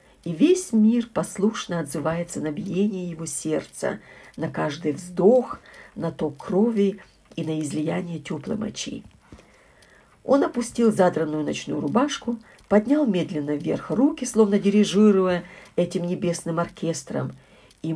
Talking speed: 115 wpm